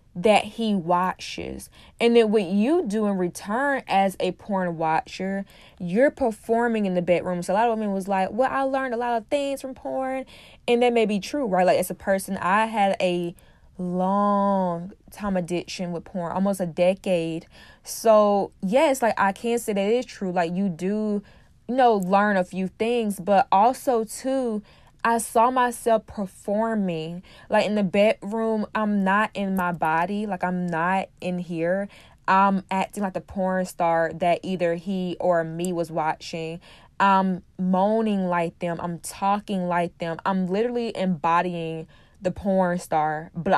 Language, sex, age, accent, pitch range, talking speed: English, female, 10-29, American, 175-205 Hz, 170 wpm